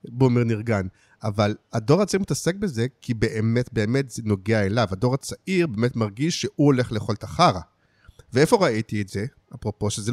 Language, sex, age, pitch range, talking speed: English, male, 50-69, 115-150 Hz, 155 wpm